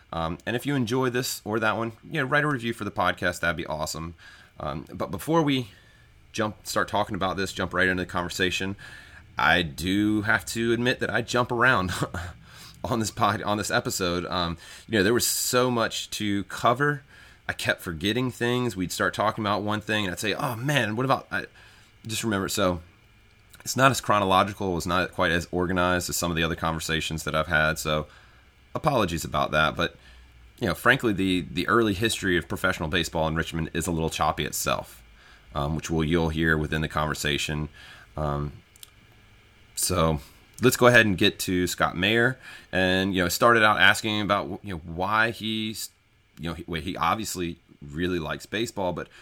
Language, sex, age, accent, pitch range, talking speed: English, male, 30-49, American, 85-110 Hz, 195 wpm